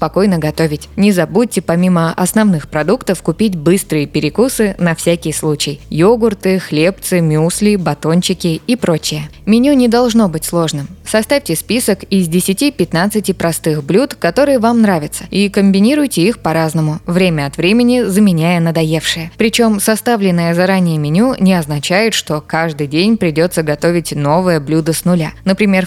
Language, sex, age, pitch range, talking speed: Russian, female, 20-39, 160-205 Hz, 135 wpm